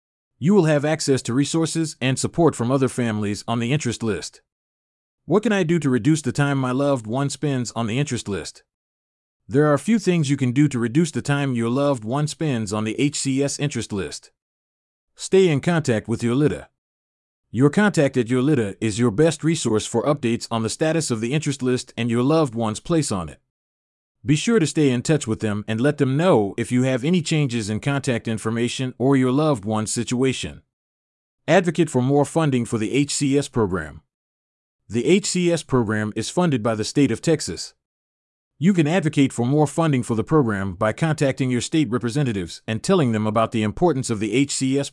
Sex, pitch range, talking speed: male, 110-150 Hz, 200 wpm